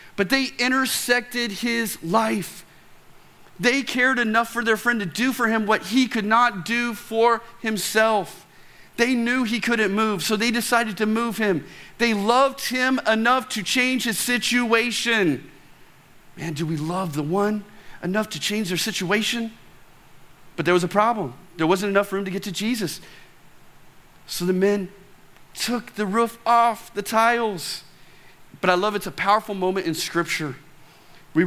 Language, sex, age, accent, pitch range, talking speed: English, male, 40-59, American, 190-235 Hz, 160 wpm